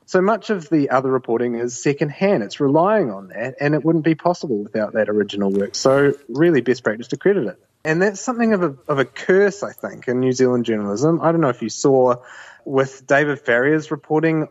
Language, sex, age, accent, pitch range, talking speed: English, male, 30-49, Australian, 120-160 Hz, 210 wpm